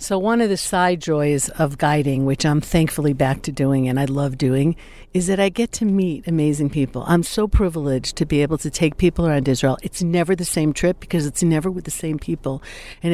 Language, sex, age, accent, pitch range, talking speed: English, female, 60-79, American, 150-185 Hz, 230 wpm